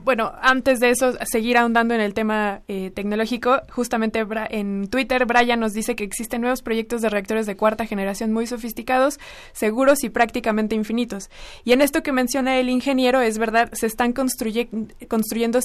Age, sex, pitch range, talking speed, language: 20-39, female, 215-250 Hz, 170 wpm, Spanish